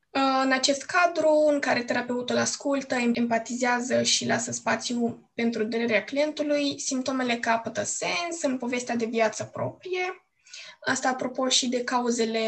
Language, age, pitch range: Romanian, 20-39, 230-290 Hz